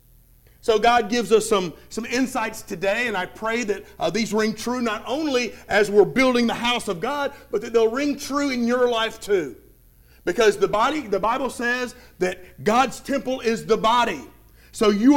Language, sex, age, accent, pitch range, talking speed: English, male, 40-59, American, 210-275 Hz, 185 wpm